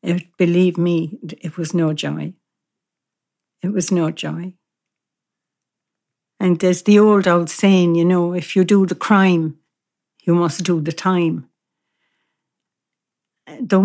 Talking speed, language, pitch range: 125 wpm, English, 170-200 Hz